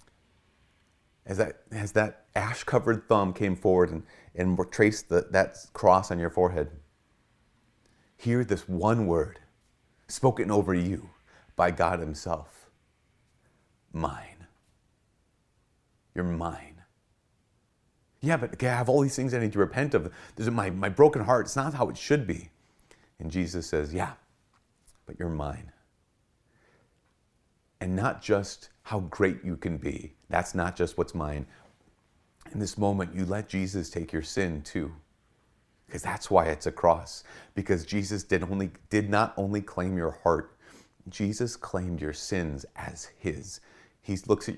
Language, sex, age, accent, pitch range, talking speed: English, male, 40-59, American, 85-105 Hz, 140 wpm